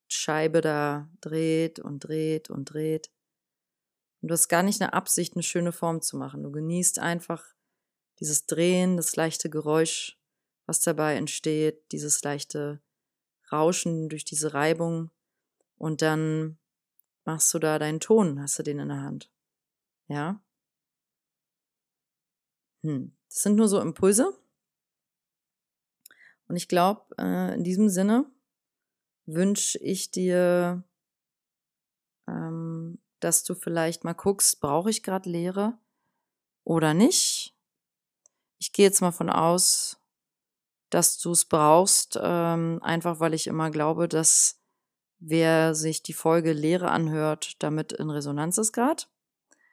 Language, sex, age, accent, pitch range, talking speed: German, female, 30-49, German, 155-185 Hz, 125 wpm